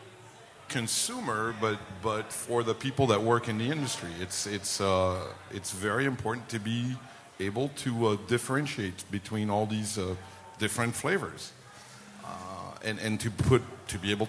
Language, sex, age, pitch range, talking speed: English, male, 50-69, 100-120 Hz, 155 wpm